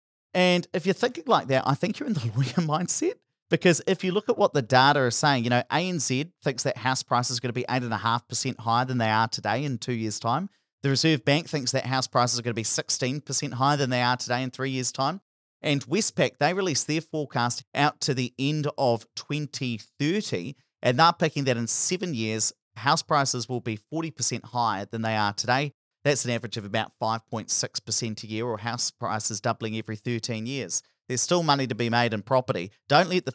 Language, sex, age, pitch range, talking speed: English, male, 30-49, 120-150 Hz, 215 wpm